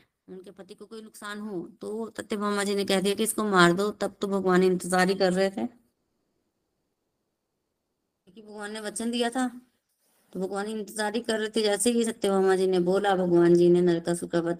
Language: Hindi